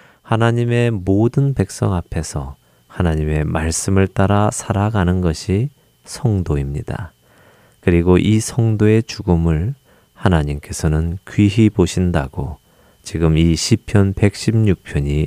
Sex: male